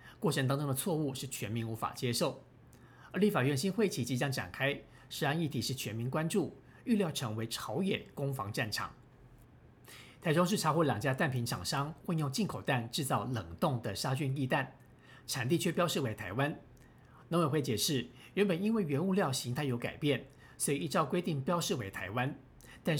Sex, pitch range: male, 125-165 Hz